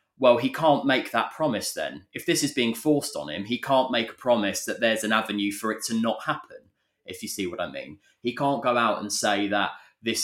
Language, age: English, 20-39